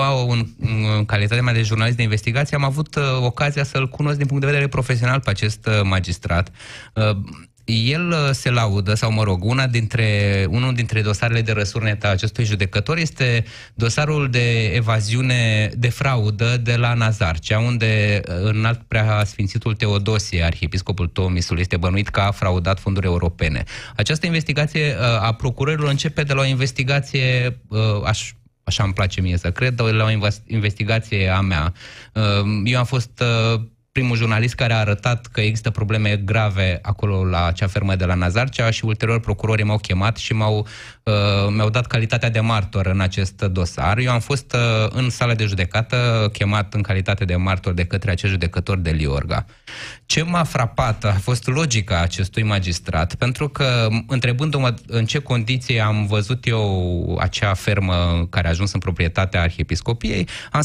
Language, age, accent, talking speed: Romanian, 20-39, native, 165 wpm